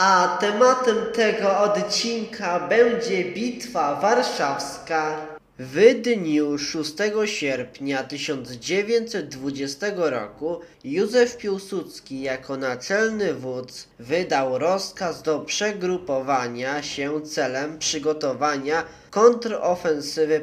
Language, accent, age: Polish, native, 20-39